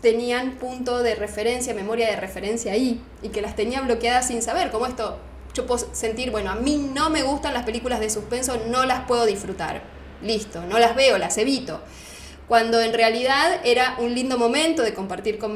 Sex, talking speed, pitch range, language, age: female, 195 wpm, 205-250 Hz, Spanish, 10-29